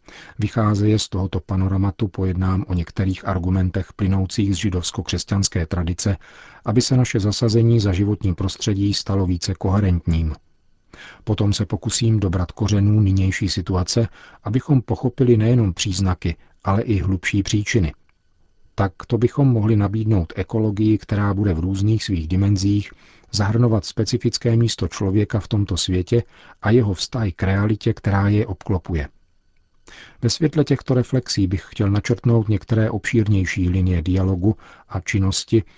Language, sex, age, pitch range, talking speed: Czech, male, 40-59, 95-110 Hz, 130 wpm